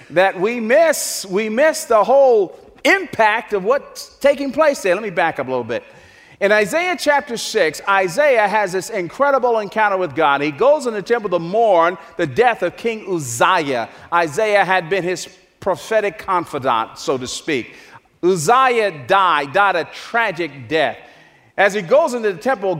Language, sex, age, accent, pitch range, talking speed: English, male, 40-59, American, 190-265 Hz, 170 wpm